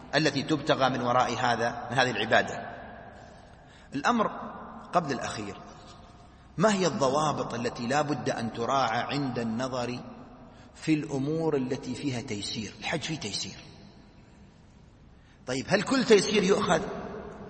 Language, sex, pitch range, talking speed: Arabic, male, 140-175 Hz, 115 wpm